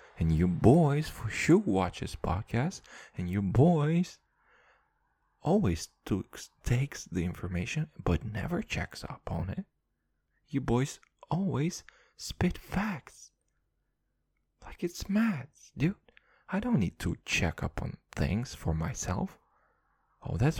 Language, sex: English, male